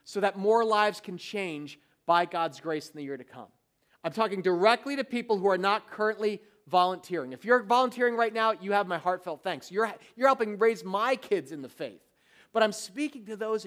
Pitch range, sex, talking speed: 190-245 Hz, male, 210 wpm